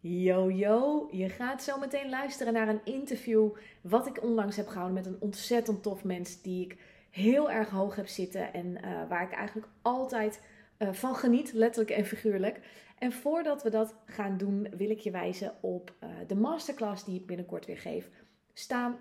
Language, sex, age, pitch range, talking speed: Dutch, female, 30-49, 195-230 Hz, 185 wpm